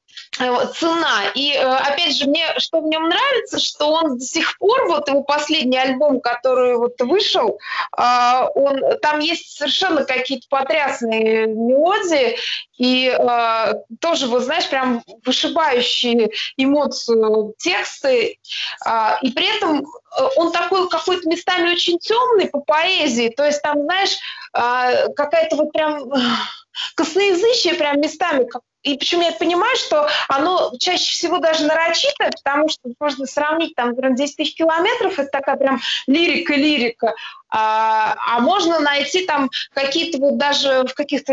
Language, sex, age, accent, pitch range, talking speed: Russian, female, 20-39, native, 260-330 Hz, 130 wpm